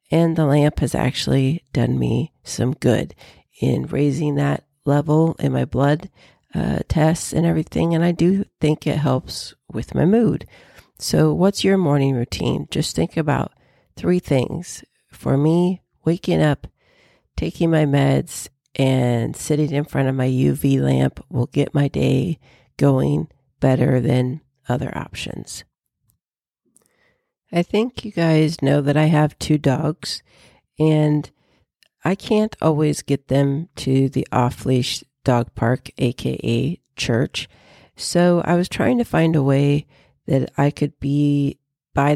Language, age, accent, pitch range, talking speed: English, 50-69, American, 130-155 Hz, 140 wpm